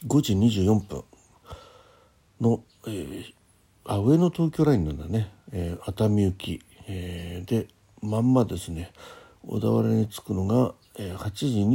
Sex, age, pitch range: male, 60-79, 90-115 Hz